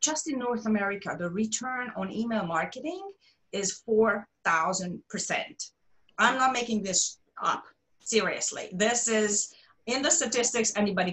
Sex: female